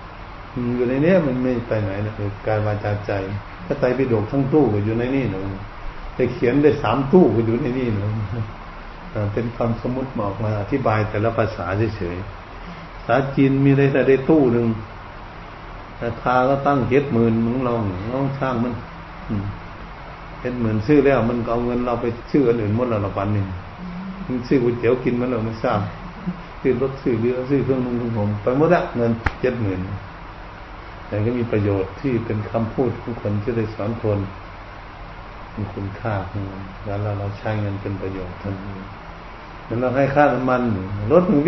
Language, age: Thai, 60-79